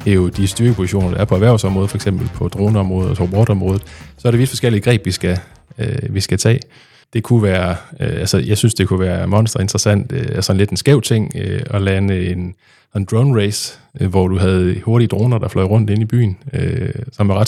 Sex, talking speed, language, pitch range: male, 235 wpm, Danish, 95-120 Hz